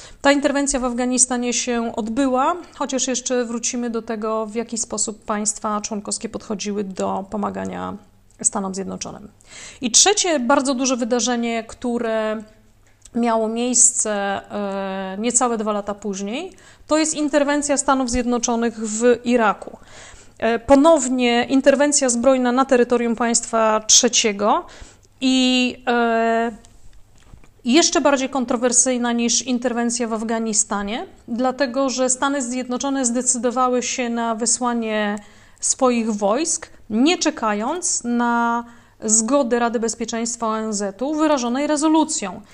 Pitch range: 220-260 Hz